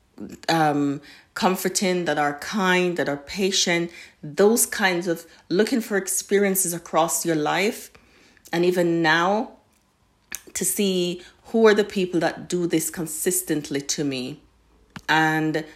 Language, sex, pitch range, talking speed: English, female, 155-180 Hz, 125 wpm